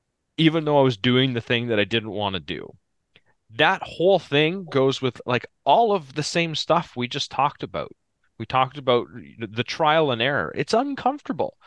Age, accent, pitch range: 30-49, American, 100-135 Hz